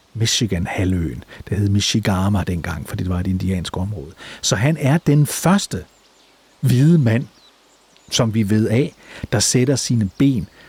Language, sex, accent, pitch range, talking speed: Danish, male, native, 105-145 Hz, 150 wpm